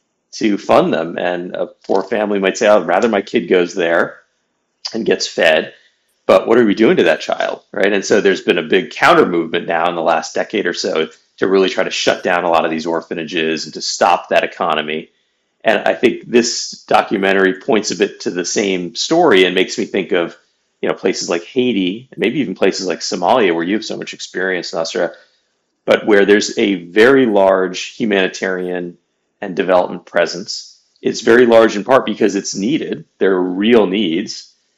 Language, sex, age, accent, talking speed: English, male, 40-59, American, 200 wpm